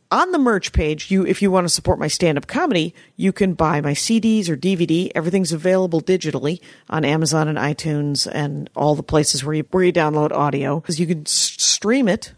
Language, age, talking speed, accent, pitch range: English, 50-69, 200 wpm, American, 155-210 Hz